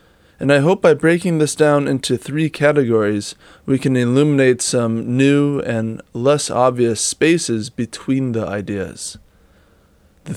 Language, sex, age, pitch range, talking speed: English, male, 20-39, 115-145 Hz, 135 wpm